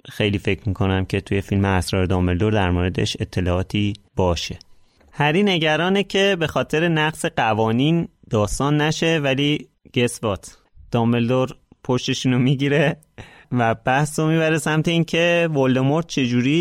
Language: Persian